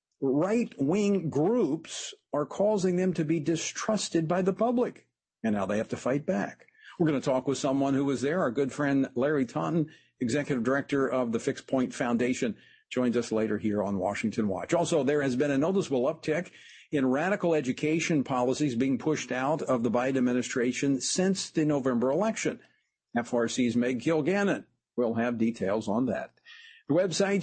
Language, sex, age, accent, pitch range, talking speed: English, male, 50-69, American, 135-185 Hz, 170 wpm